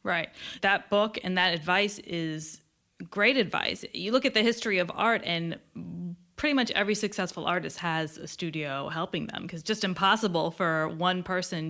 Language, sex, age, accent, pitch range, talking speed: English, female, 20-39, American, 165-210 Hz, 170 wpm